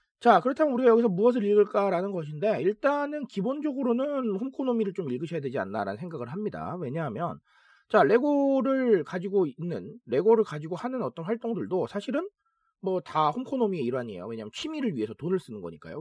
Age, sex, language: 40-59, male, Korean